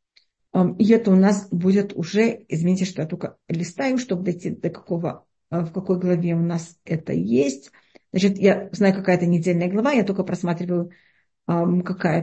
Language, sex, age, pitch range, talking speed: Russian, female, 50-69, 190-245 Hz, 160 wpm